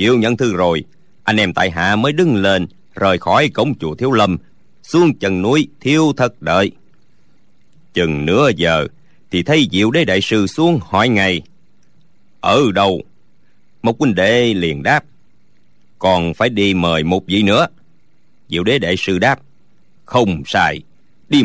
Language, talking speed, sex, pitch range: Vietnamese, 160 wpm, male, 90-135 Hz